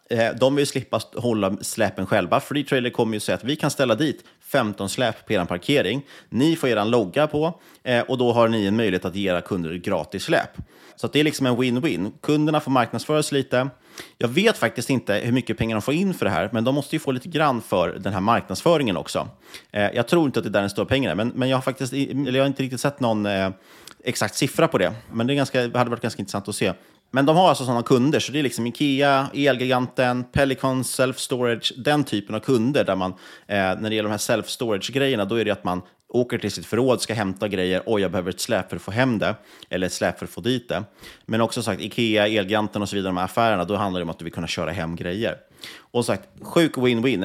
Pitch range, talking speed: 100-130 Hz, 245 wpm